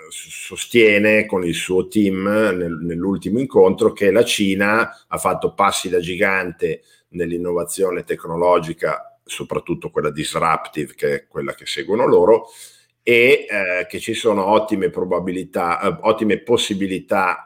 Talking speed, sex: 115 wpm, male